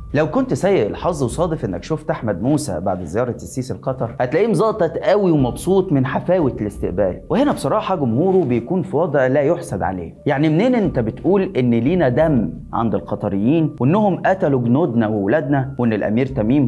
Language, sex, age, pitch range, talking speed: Arabic, male, 30-49, 115-155 Hz, 160 wpm